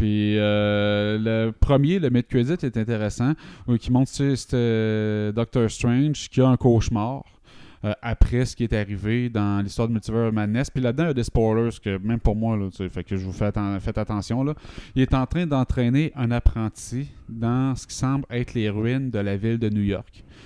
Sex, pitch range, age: male, 105-120 Hz, 30-49